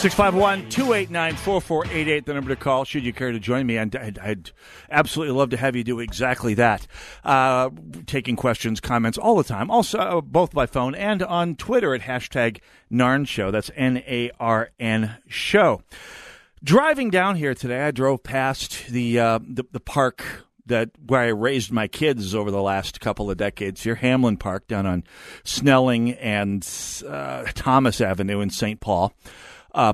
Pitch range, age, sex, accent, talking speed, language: 110-160 Hz, 50-69, male, American, 160 wpm, English